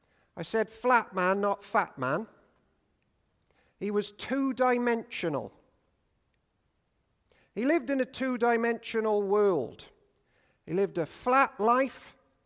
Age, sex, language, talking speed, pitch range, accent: 50-69, male, English, 100 wpm, 195-255 Hz, British